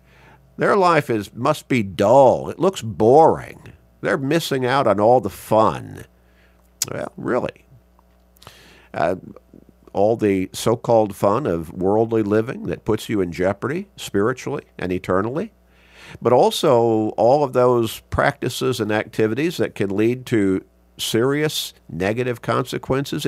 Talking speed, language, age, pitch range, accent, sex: 125 wpm, English, 50-69, 95-130 Hz, American, male